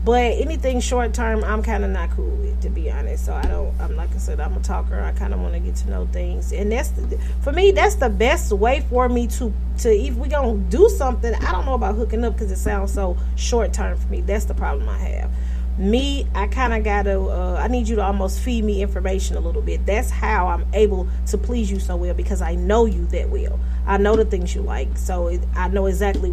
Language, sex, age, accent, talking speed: English, female, 30-49, American, 260 wpm